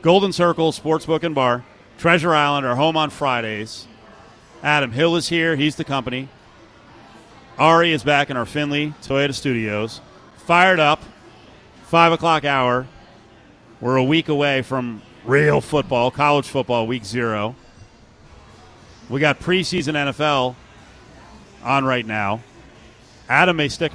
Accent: American